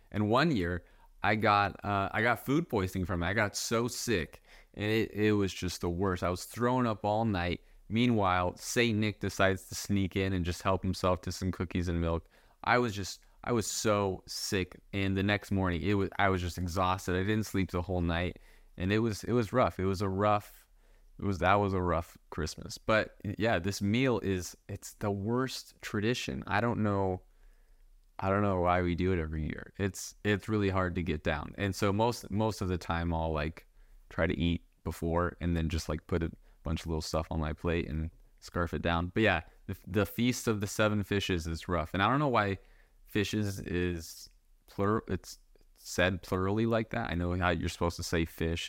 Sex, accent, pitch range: male, American, 85-105 Hz